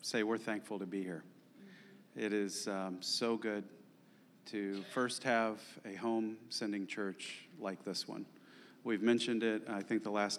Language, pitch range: English, 100-115 Hz